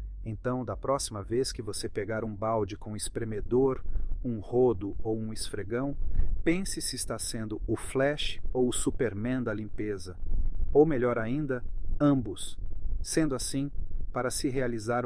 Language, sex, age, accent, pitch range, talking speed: Portuguese, male, 40-59, Brazilian, 95-125 Hz, 145 wpm